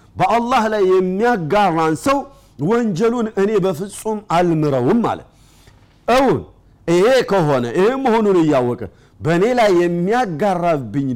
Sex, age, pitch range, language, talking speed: male, 50-69, 140-195 Hz, Amharic, 90 wpm